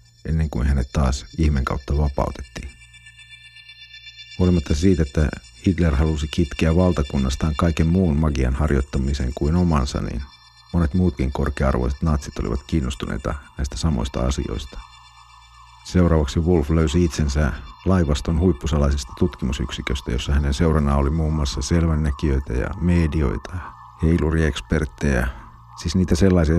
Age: 50-69